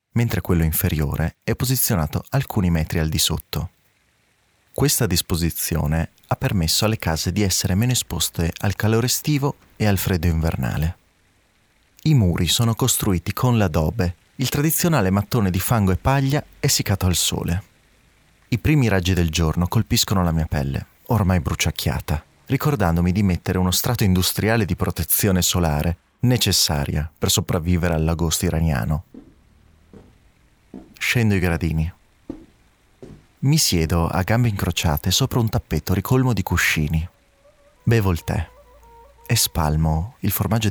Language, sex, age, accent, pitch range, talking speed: Italian, male, 30-49, native, 85-115 Hz, 130 wpm